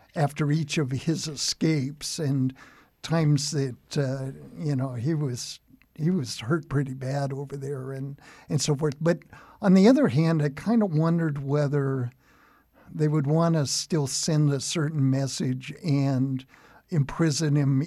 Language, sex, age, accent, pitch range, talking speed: English, male, 60-79, American, 135-155 Hz, 155 wpm